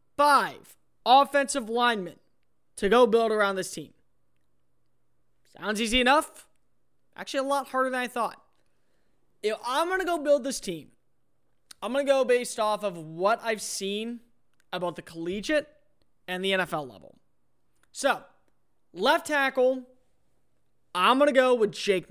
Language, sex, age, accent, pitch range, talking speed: English, male, 20-39, American, 185-250 Hz, 145 wpm